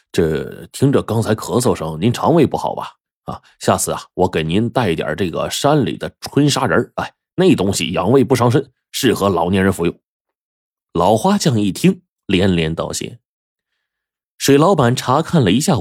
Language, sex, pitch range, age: Chinese, male, 85-125 Hz, 20-39